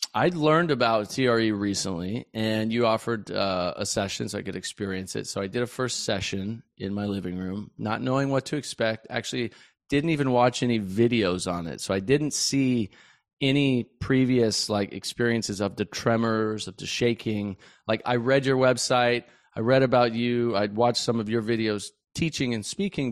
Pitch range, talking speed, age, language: 110-135 Hz, 185 wpm, 30-49, English